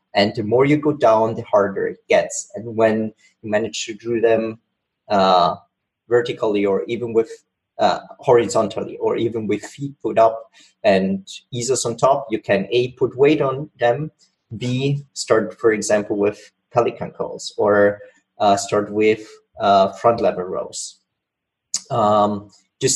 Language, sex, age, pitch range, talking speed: English, male, 30-49, 110-150 Hz, 150 wpm